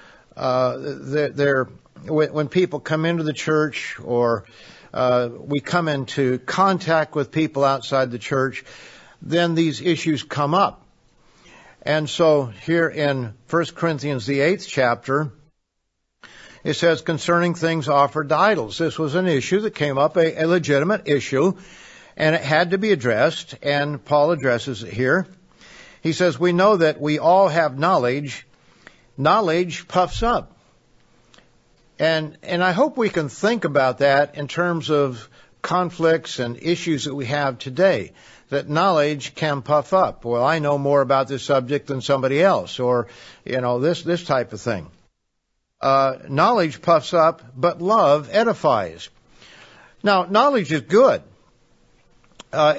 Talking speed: 145 wpm